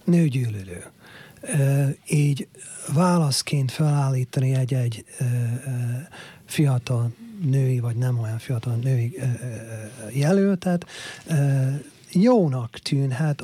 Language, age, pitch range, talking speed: Hungarian, 40-59, 125-145 Hz, 65 wpm